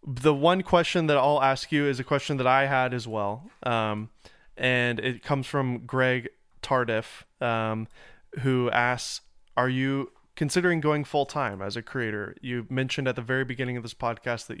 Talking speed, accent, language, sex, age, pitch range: 175 wpm, American, English, male, 20-39, 115-130 Hz